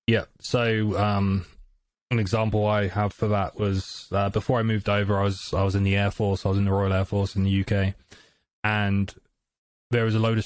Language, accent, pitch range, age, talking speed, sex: English, British, 100-115 Hz, 20-39, 225 wpm, male